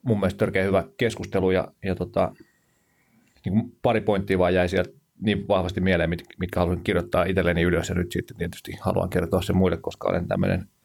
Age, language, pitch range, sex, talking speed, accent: 30-49, Finnish, 85-100 Hz, male, 185 wpm, native